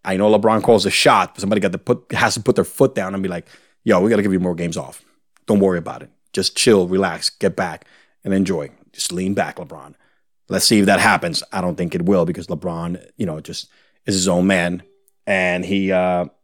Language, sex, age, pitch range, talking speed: English, male, 30-49, 95-120 Hz, 240 wpm